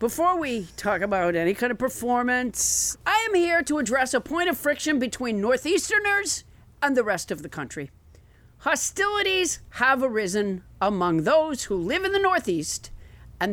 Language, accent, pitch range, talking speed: English, American, 205-320 Hz, 160 wpm